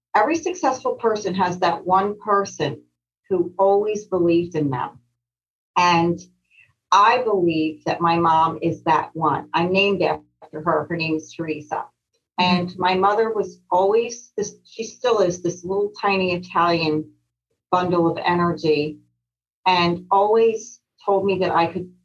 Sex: female